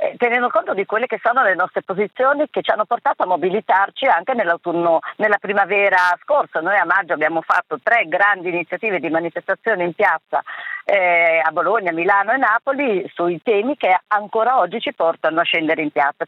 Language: Italian